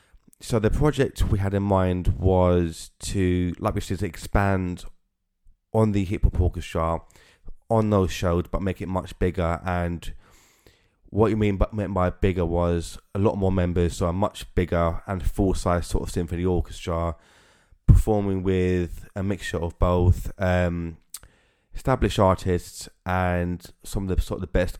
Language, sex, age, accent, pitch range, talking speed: English, male, 20-39, British, 85-100 Hz, 160 wpm